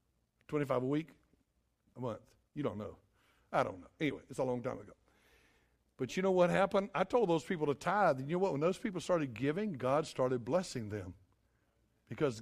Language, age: English, 60-79